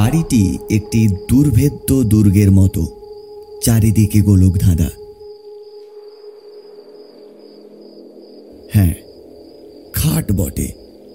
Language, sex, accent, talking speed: Bengali, male, native, 55 wpm